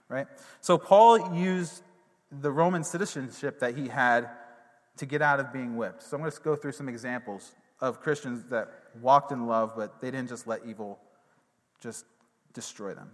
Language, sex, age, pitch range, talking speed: English, male, 30-49, 130-160 Hz, 180 wpm